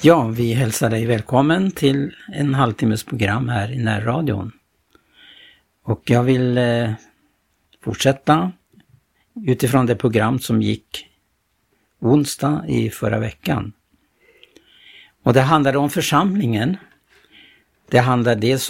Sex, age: male, 60-79